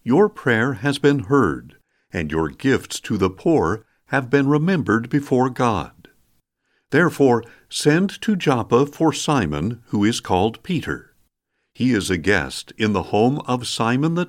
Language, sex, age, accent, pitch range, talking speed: English, male, 50-69, American, 110-150 Hz, 150 wpm